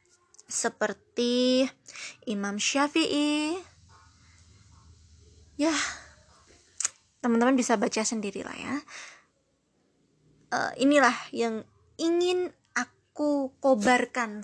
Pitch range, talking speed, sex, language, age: 235-300 Hz, 65 wpm, female, Indonesian, 20-39